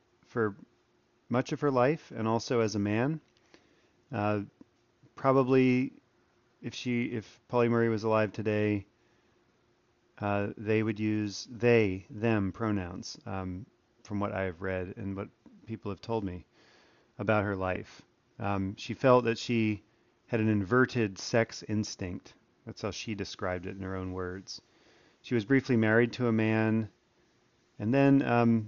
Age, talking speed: 40-59, 150 wpm